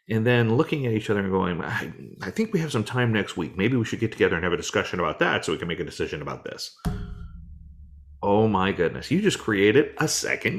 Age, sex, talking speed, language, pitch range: 30-49, male, 250 wpm, English, 95-150 Hz